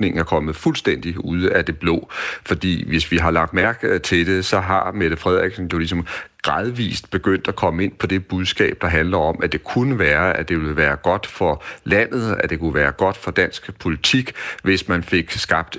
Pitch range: 80-95 Hz